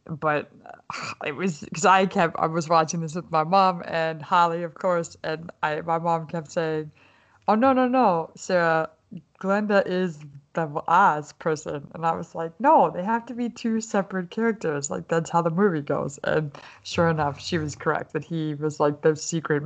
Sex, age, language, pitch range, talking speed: female, 20-39, English, 155-195 Hz, 190 wpm